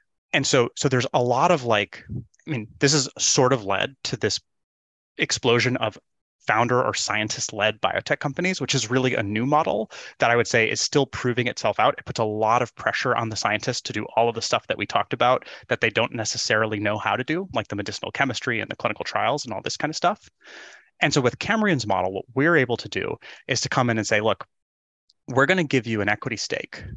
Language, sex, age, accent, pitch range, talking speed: English, male, 30-49, American, 110-140 Hz, 230 wpm